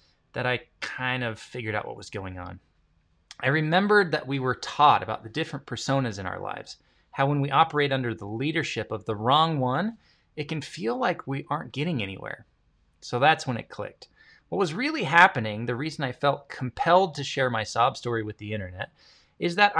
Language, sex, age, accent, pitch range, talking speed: English, male, 20-39, American, 115-165 Hz, 200 wpm